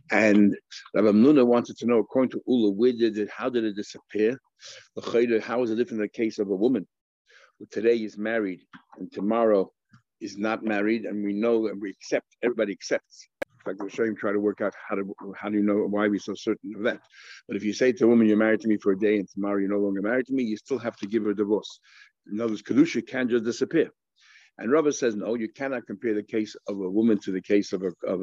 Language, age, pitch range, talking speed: English, 60-79, 105-125 Hz, 250 wpm